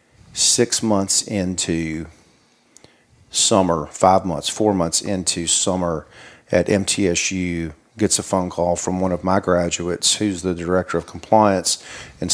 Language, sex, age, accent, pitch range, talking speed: English, male, 50-69, American, 85-110 Hz, 130 wpm